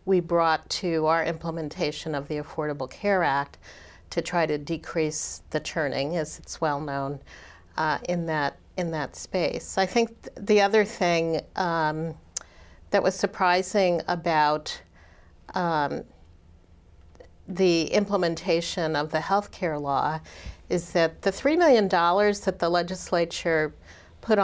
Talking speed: 135 wpm